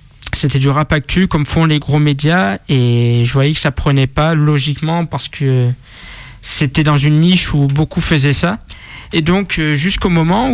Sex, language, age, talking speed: male, French, 20-39, 170 wpm